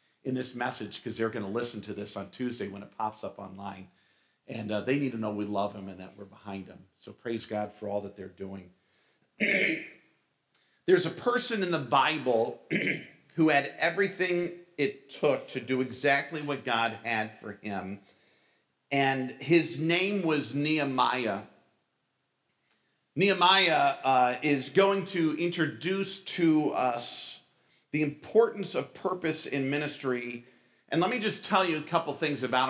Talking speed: 160 wpm